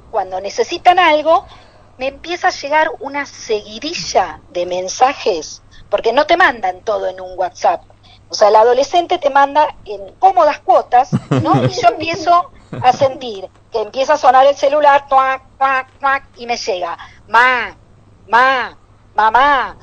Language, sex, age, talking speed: Spanish, female, 50-69, 140 wpm